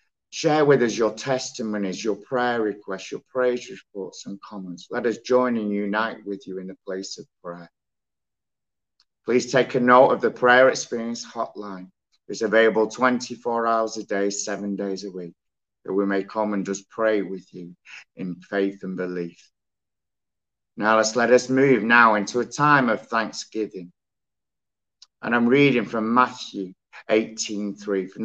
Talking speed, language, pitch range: 155 wpm, English, 95-120 Hz